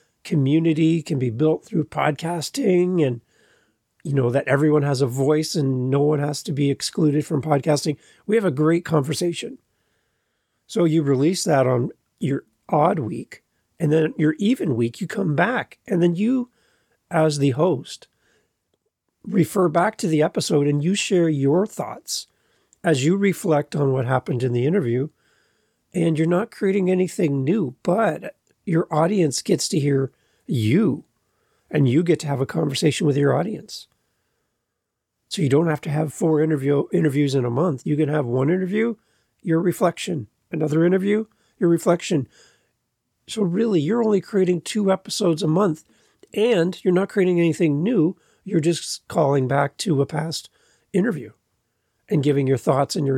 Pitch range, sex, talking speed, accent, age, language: 145-180 Hz, male, 160 wpm, American, 40-59, English